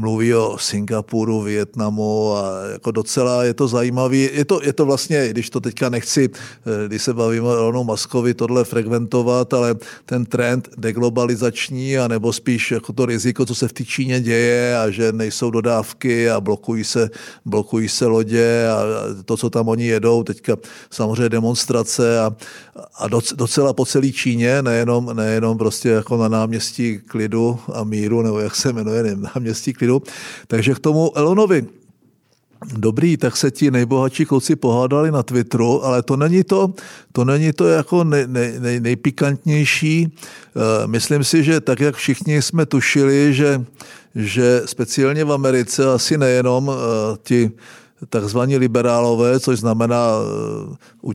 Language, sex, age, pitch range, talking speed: Czech, male, 50-69, 115-135 Hz, 150 wpm